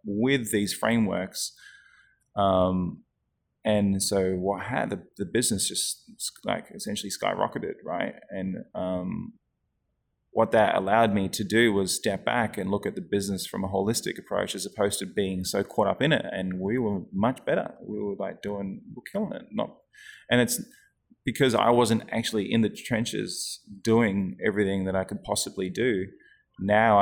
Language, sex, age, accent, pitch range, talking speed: English, male, 20-39, Australian, 95-115 Hz, 165 wpm